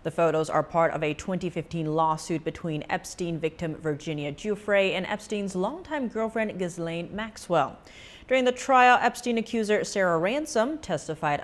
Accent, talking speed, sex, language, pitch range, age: American, 140 wpm, female, English, 155-215 Hz, 30-49